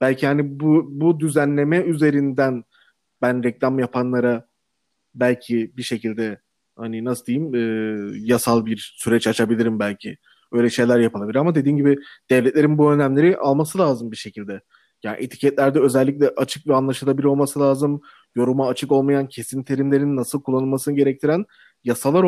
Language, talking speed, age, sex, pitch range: Turkish, 135 wpm, 30-49, male, 120-145 Hz